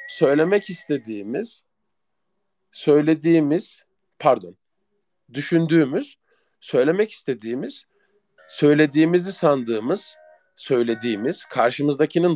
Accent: native